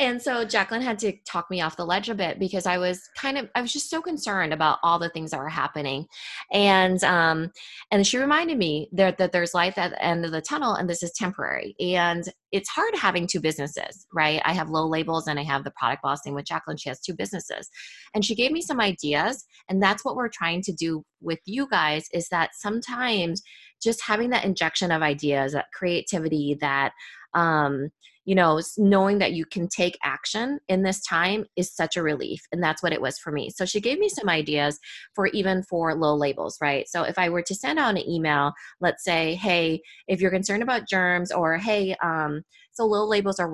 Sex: female